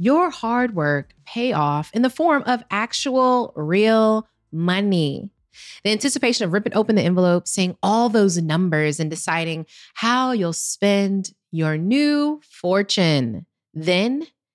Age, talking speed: 20-39, 130 wpm